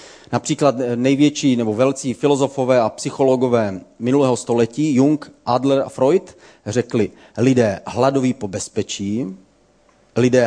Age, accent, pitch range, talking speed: 40-59, native, 115-145 Hz, 110 wpm